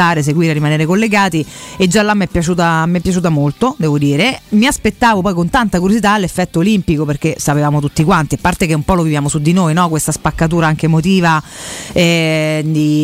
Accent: native